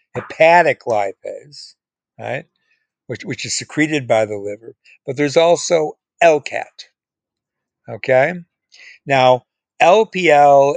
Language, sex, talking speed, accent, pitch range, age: English, male, 95 wpm, American, 125-165 Hz, 60-79